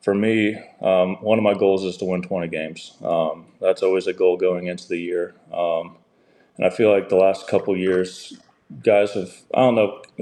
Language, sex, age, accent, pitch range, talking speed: English, male, 20-39, American, 90-115 Hz, 205 wpm